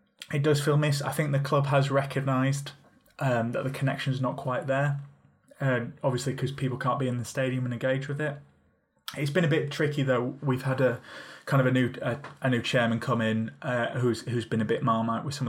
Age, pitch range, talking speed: 20-39, 115-135 Hz, 230 wpm